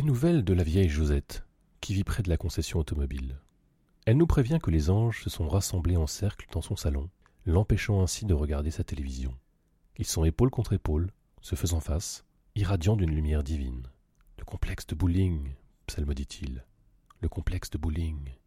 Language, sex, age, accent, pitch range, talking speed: French, male, 30-49, French, 80-110 Hz, 190 wpm